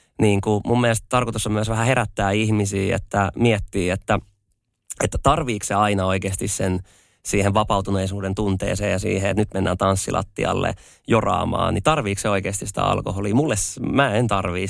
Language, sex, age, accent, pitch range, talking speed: Finnish, male, 20-39, native, 100-110 Hz, 155 wpm